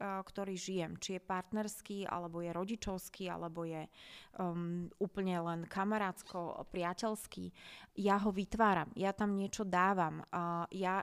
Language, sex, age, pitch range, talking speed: Slovak, female, 20-39, 180-200 Hz, 125 wpm